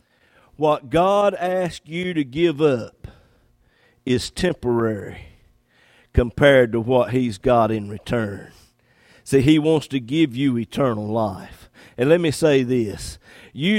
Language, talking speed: English, 130 wpm